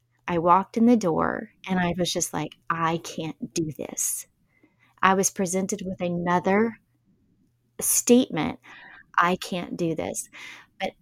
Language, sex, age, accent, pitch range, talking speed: English, female, 20-39, American, 180-250 Hz, 135 wpm